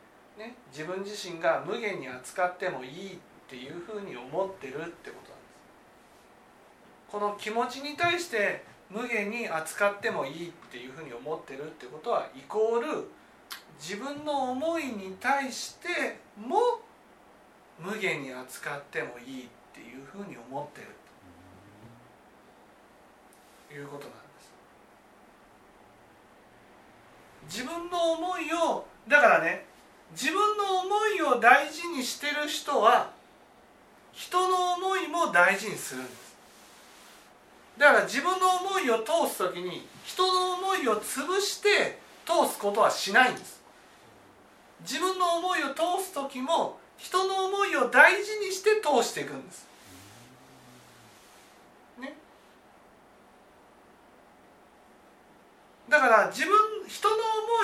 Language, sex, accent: Japanese, male, native